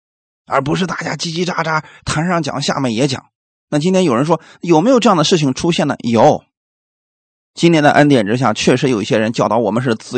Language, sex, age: Chinese, male, 30-49